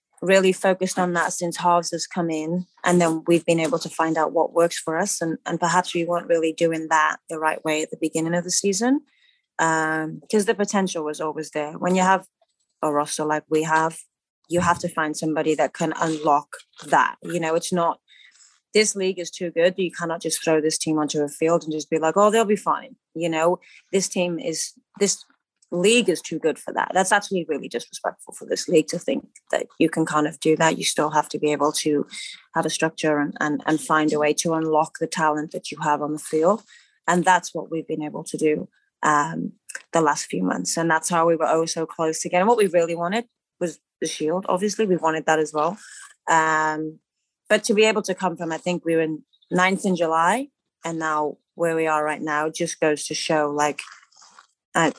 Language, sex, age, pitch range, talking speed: English, female, 20-39, 155-180 Hz, 225 wpm